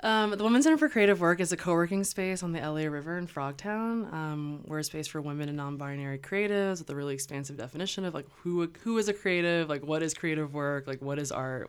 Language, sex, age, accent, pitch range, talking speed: English, female, 20-39, American, 140-170 Hz, 240 wpm